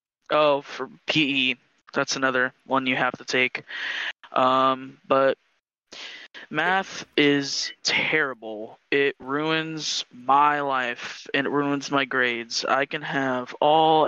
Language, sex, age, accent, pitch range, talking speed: English, male, 20-39, American, 130-150 Hz, 120 wpm